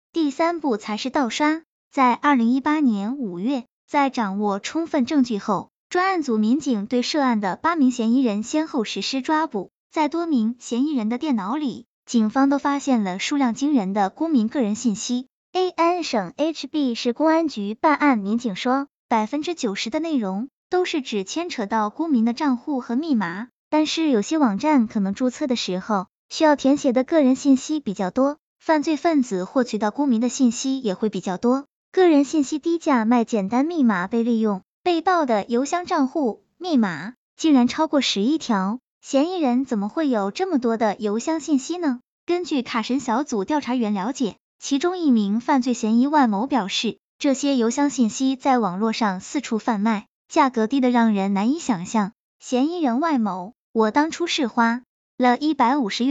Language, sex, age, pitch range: Chinese, male, 10-29, 225-295 Hz